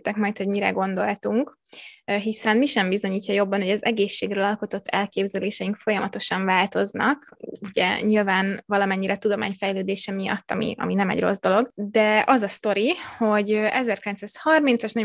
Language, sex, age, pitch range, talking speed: Hungarian, female, 20-39, 200-225 Hz, 135 wpm